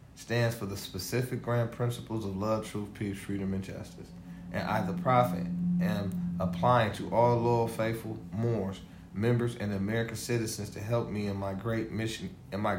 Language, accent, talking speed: English, American, 175 wpm